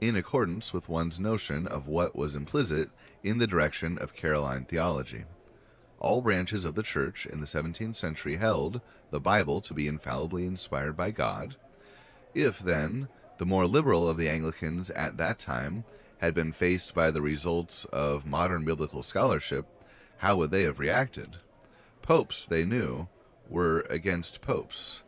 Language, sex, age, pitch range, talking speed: English, male, 30-49, 80-100 Hz, 155 wpm